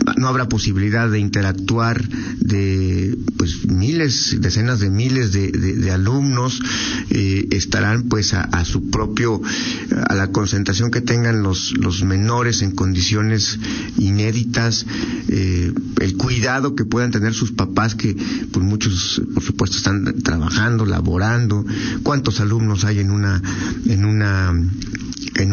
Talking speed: 135 wpm